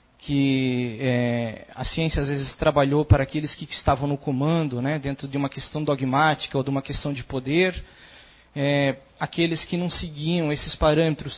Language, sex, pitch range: Portuguese, male, 135-160 Hz